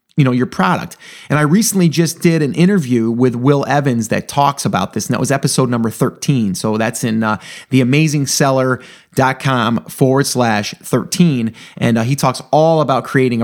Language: English